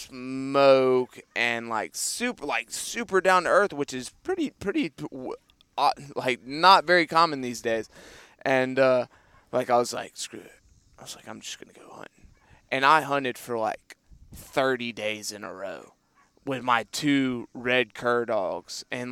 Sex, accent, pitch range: male, American, 120-150 Hz